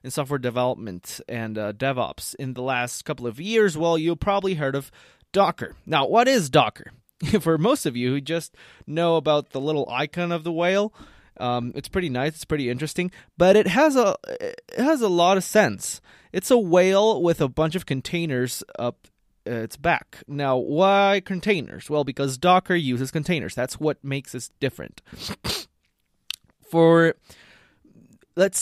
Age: 20-39